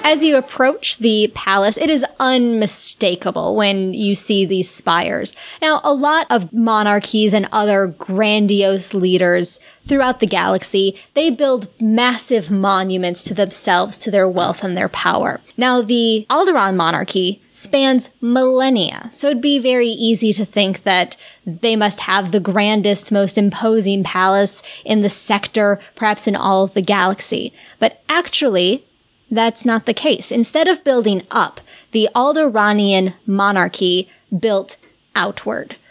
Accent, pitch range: American, 195-240 Hz